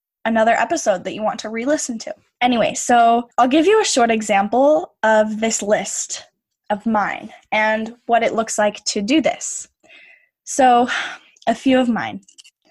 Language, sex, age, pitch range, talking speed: English, female, 10-29, 210-260 Hz, 165 wpm